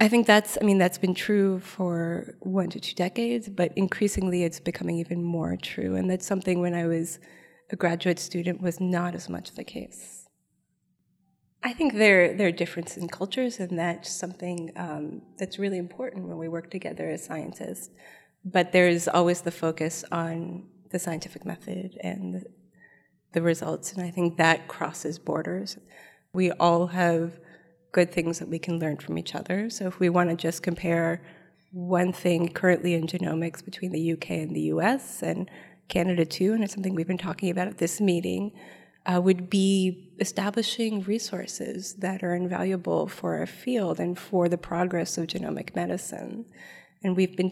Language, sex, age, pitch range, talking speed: English, female, 30-49, 170-190 Hz, 175 wpm